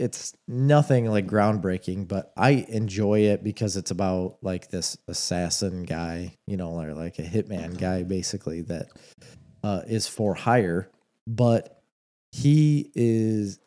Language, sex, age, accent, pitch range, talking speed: English, male, 20-39, American, 95-115 Hz, 135 wpm